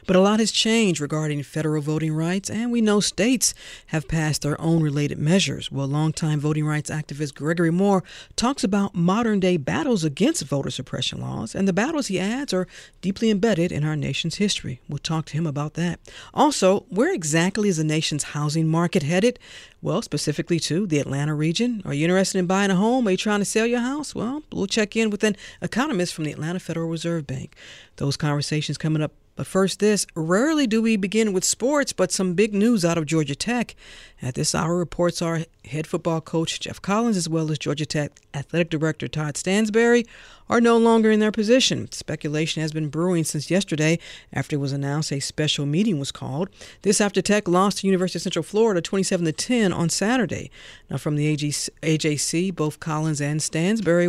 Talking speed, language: 195 wpm, English